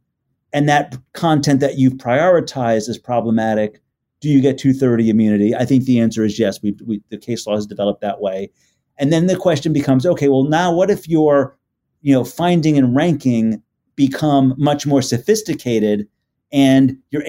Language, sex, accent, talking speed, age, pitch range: English, male, American, 175 wpm, 40-59, 115-140 Hz